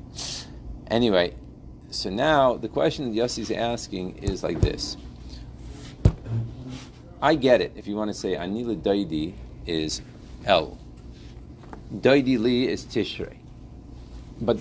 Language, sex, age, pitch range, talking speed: English, male, 50-69, 110-150 Hz, 115 wpm